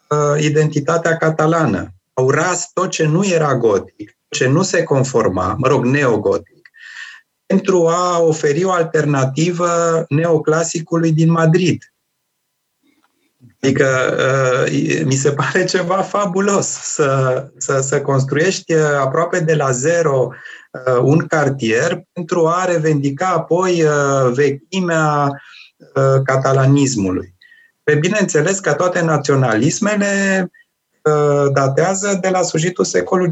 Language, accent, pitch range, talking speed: Romanian, native, 130-175 Hz, 105 wpm